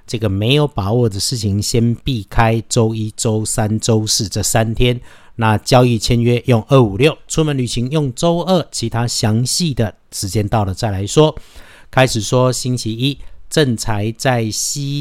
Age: 50-69